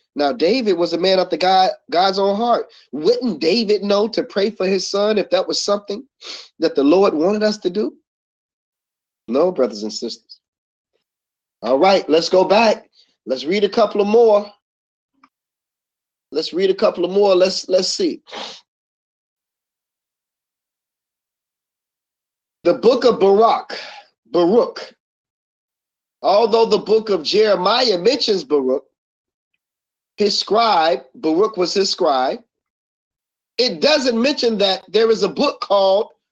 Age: 30-49